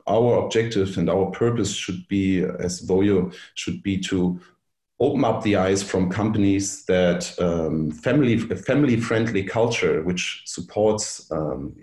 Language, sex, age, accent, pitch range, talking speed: English, male, 40-59, German, 90-105 Hz, 140 wpm